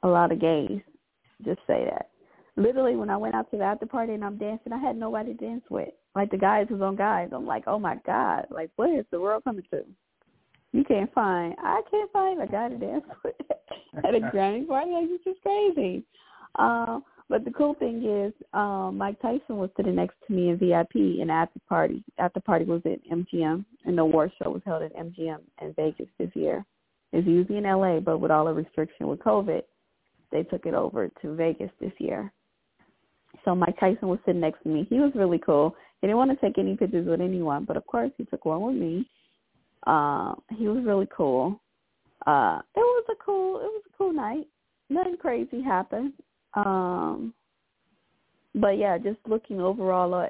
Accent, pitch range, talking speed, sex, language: American, 170-255 Hz, 205 wpm, female, English